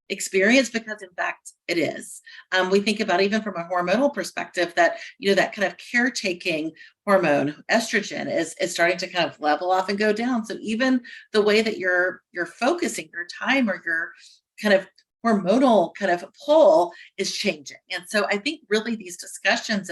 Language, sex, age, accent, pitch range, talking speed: English, female, 40-59, American, 180-230 Hz, 185 wpm